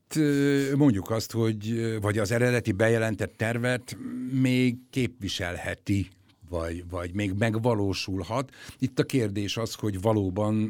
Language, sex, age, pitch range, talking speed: Hungarian, male, 60-79, 95-115 Hz, 105 wpm